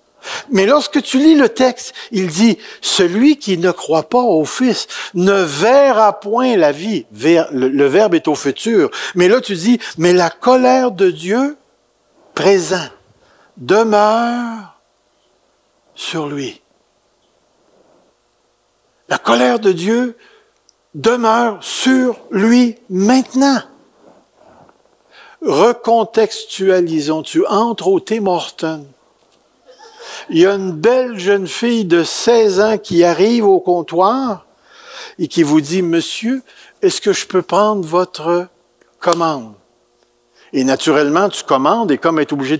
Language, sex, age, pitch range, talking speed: French, male, 60-79, 165-245 Hz, 125 wpm